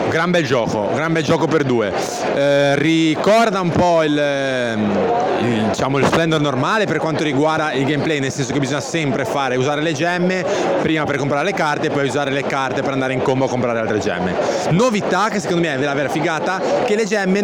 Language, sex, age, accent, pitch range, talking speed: Italian, male, 30-49, native, 145-185 Hz, 210 wpm